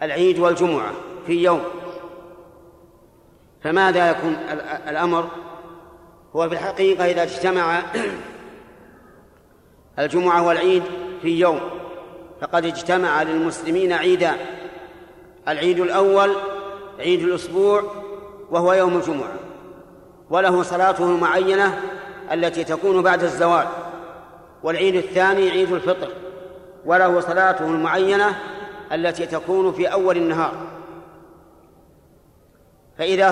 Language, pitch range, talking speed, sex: Arabic, 170-190 Hz, 85 wpm, male